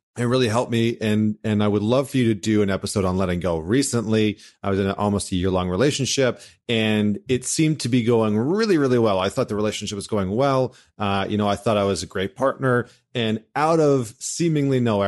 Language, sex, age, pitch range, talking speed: English, male, 30-49, 100-125 Hz, 235 wpm